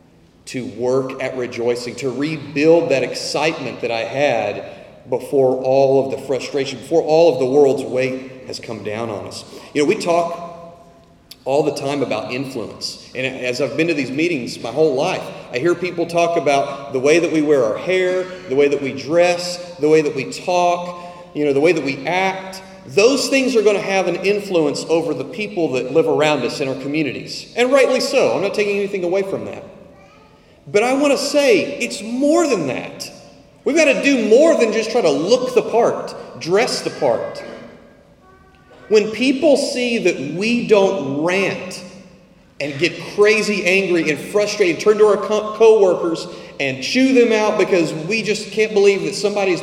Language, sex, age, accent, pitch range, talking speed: English, male, 40-59, American, 145-210 Hz, 190 wpm